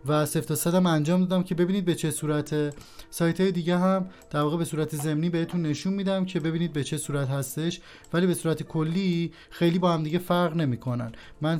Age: 30-49